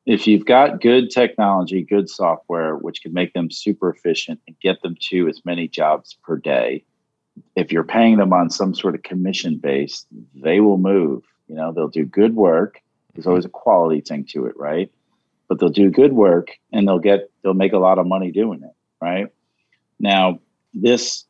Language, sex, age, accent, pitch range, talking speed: English, male, 40-59, American, 85-120 Hz, 190 wpm